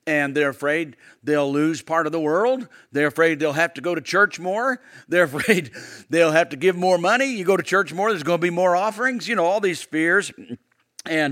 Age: 50-69